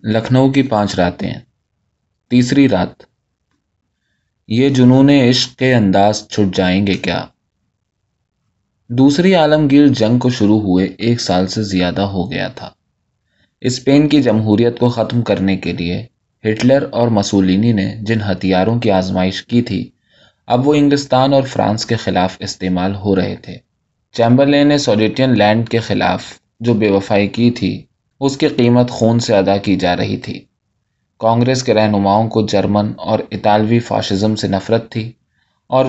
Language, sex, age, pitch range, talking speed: Urdu, male, 20-39, 100-125 Hz, 150 wpm